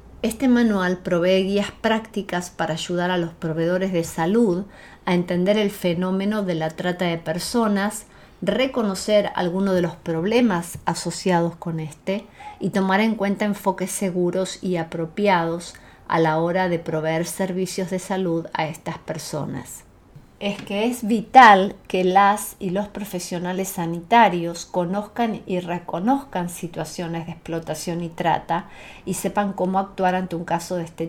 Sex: female